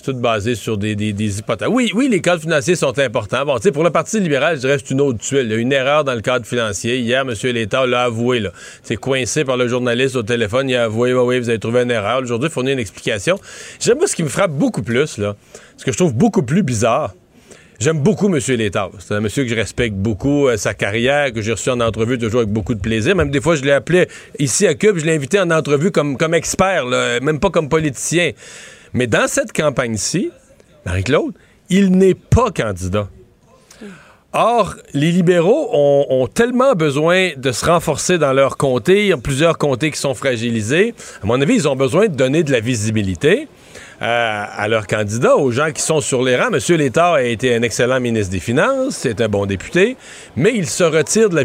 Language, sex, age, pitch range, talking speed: French, male, 40-59, 120-170 Hz, 230 wpm